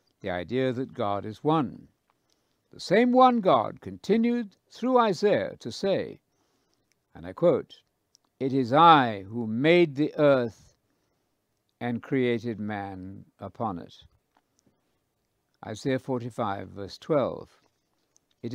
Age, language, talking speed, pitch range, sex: 60-79, English, 110 wpm, 110-175 Hz, male